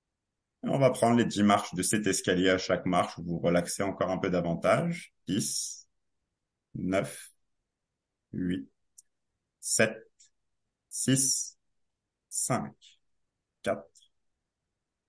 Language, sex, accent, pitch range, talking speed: French, male, French, 105-145 Hz, 105 wpm